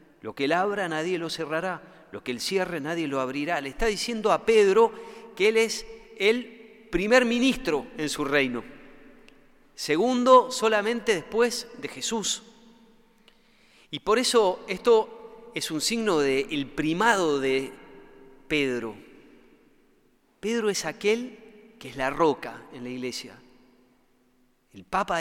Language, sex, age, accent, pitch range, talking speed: Spanish, male, 40-59, Argentinian, 140-225 Hz, 135 wpm